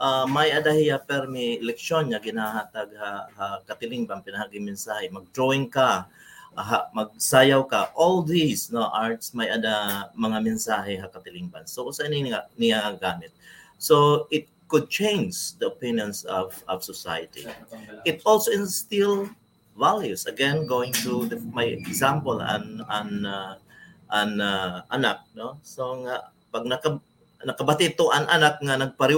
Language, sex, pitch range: English, male, 110-155 Hz